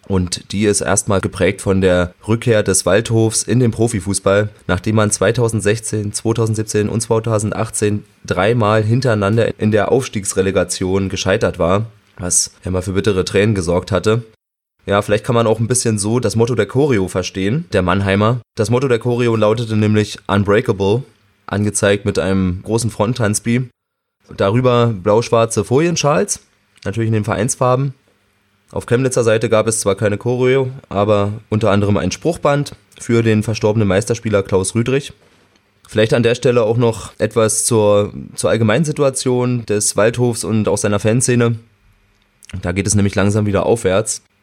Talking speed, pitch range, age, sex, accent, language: 145 wpm, 100-115 Hz, 20-39, male, German, German